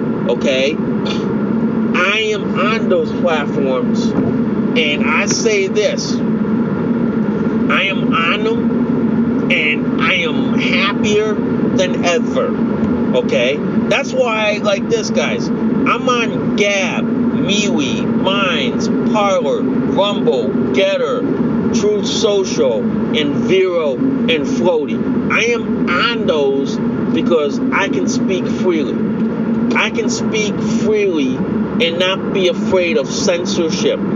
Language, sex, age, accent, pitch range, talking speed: English, male, 40-59, American, 200-235 Hz, 105 wpm